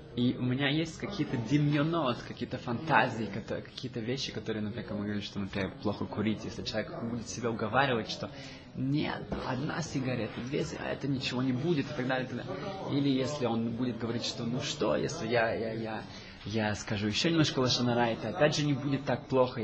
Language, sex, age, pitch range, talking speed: Russian, male, 20-39, 115-140 Hz, 185 wpm